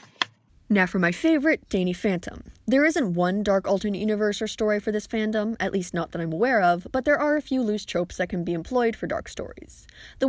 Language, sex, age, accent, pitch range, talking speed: English, female, 20-39, American, 175-225 Hz, 225 wpm